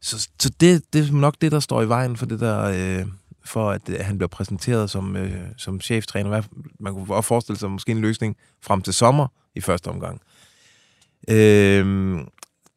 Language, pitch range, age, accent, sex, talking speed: Danish, 95-130 Hz, 20-39, native, male, 190 wpm